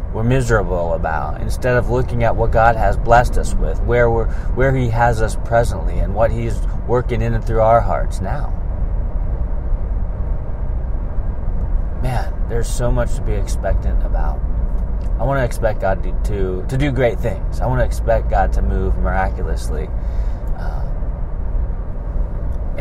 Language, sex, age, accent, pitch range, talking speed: English, male, 30-49, American, 85-115 Hz, 155 wpm